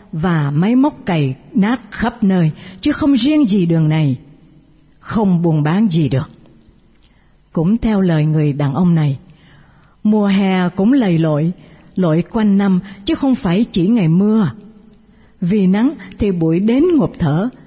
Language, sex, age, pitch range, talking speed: Vietnamese, female, 60-79, 160-220 Hz, 155 wpm